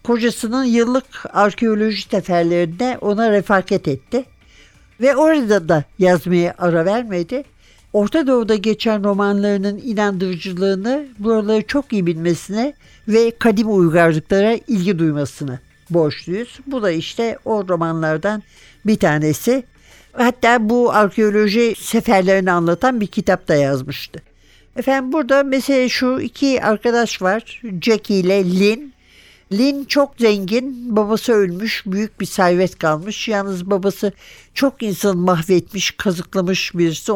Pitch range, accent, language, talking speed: 175-240 Hz, native, Turkish, 115 wpm